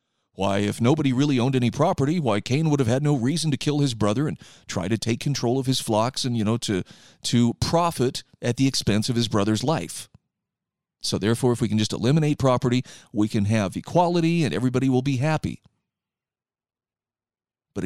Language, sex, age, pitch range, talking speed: English, male, 40-59, 115-155 Hz, 190 wpm